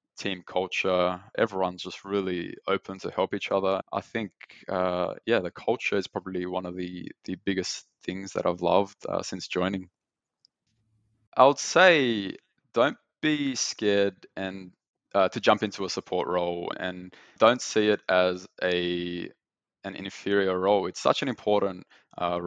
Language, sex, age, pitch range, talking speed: English, male, 20-39, 90-100 Hz, 155 wpm